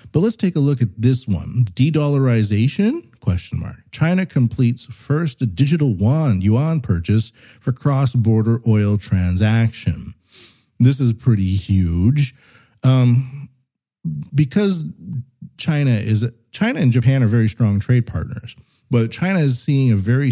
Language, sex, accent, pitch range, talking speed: English, male, American, 105-130 Hz, 125 wpm